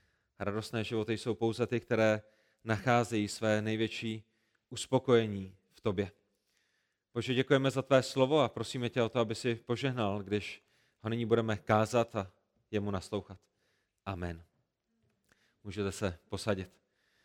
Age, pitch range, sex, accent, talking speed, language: 30-49, 115-145 Hz, male, native, 130 wpm, Czech